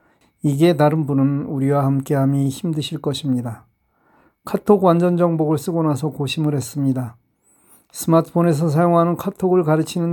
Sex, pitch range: male, 140-165 Hz